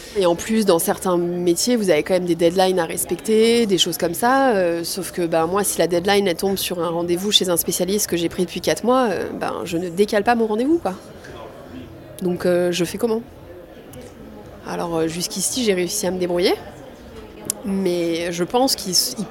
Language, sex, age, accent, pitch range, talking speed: French, female, 30-49, French, 180-225 Hz, 210 wpm